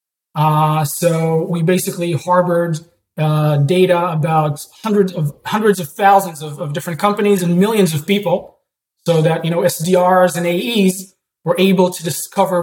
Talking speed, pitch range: 150 wpm, 155-185 Hz